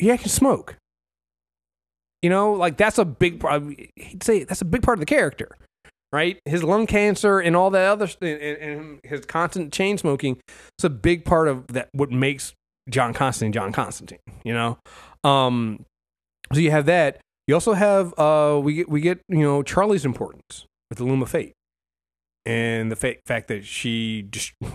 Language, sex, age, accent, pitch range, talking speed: English, male, 30-49, American, 110-155 Hz, 190 wpm